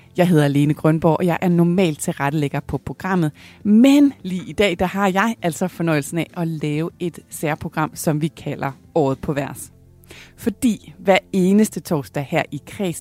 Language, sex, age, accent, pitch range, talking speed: Danish, female, 30-49, native, 150-195 Hz, 180 wpm